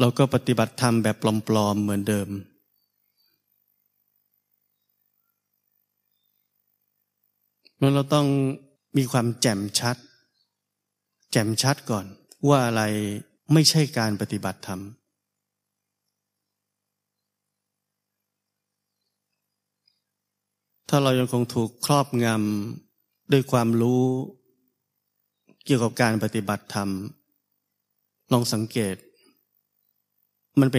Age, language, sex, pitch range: 30-49, Thai, male, 100-125 Hz